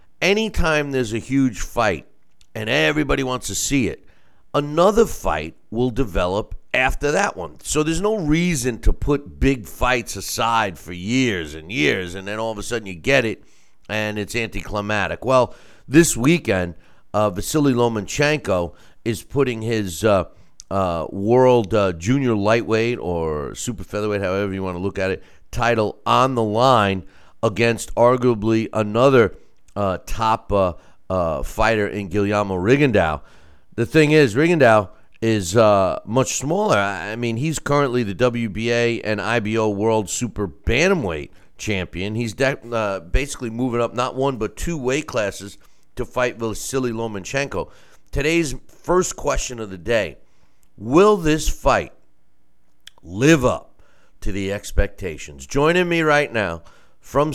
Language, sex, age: English, male, 50-69